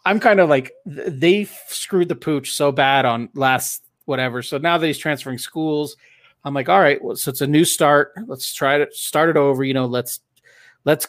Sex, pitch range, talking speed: male, 125-150 Hz, 210 wpm